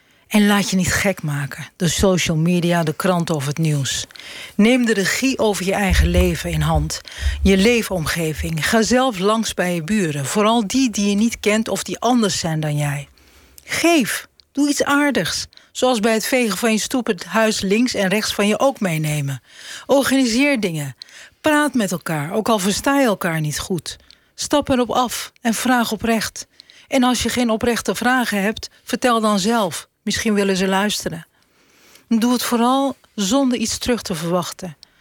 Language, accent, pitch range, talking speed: Dutch, Dutch, 175-235 Hz, 175 wpm